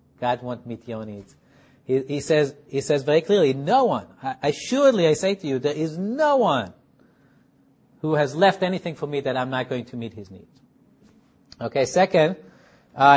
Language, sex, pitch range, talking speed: English, male, 130-160 Hz, 180 wpm